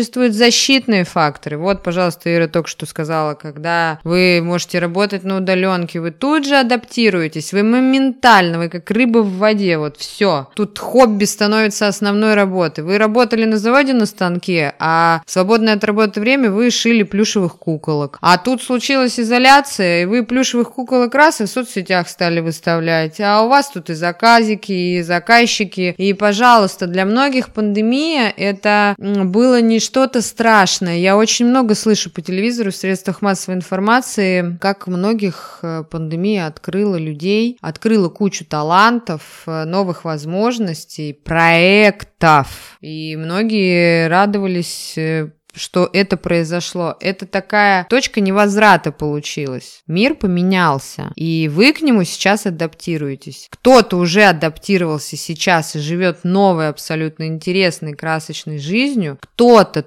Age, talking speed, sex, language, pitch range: 20-39, 130 wpm, female, Russian, 165-215 Hz